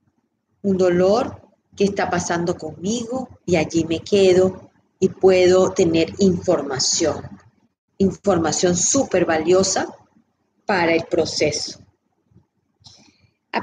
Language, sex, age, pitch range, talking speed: Spanish, female, 40-59, 175-225 Hz, 95 wpm